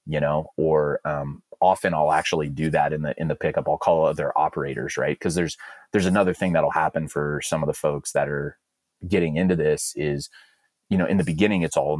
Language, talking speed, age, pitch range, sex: English, 220 wpm, 30-49, 75-80 Hz, male